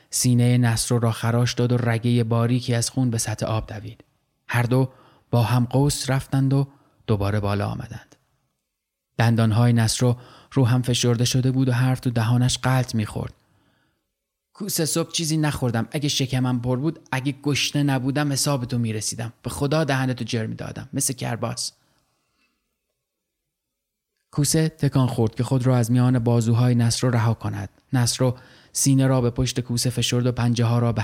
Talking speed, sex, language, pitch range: 160 wpm, male, Persian, 120-140 Hz